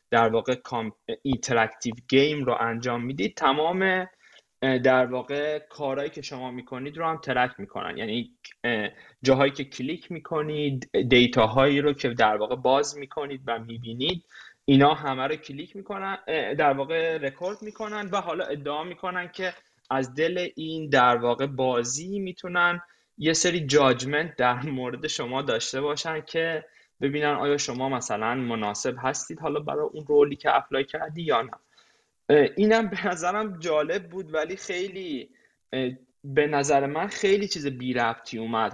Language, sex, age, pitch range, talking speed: Persian, male, 20-39, 125-165 Hz, 140 wpm